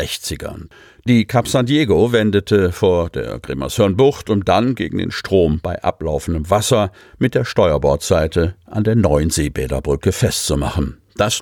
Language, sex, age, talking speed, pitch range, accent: German, male, 50-69, 130 wpm, 90-120 Hz, German